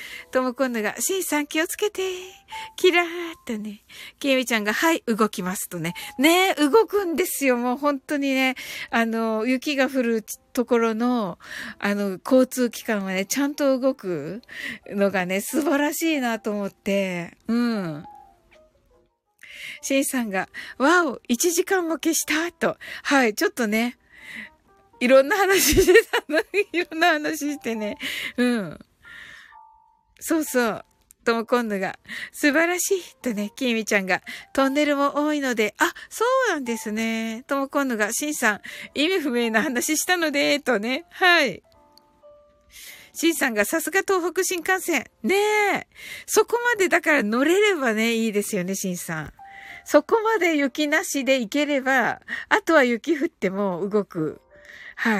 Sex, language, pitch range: female, Japanese, 230-335 Hz